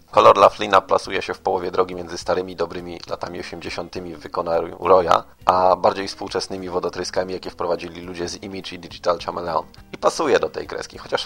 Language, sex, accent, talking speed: Polish, male, native, 175 wpm